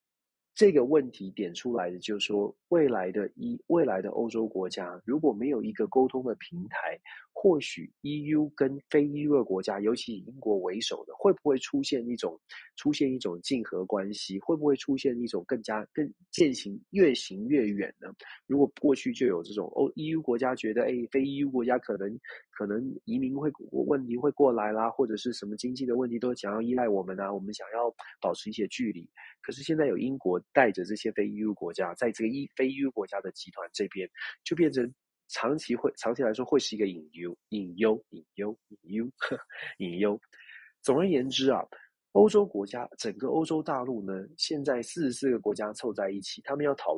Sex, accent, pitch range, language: male, native, 105-145 Hz, Chinese